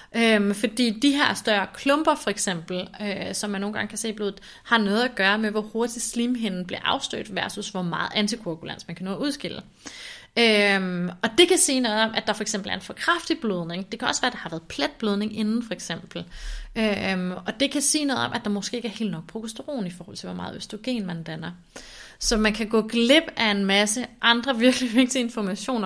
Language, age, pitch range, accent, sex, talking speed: Danish, 30-49, 195-245 Hz, native, female, 220 wpm